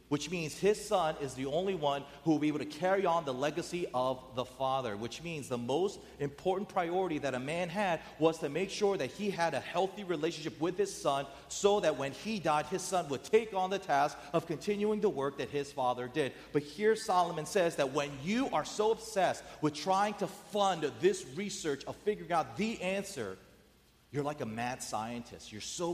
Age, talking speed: 40-59, 210 wpm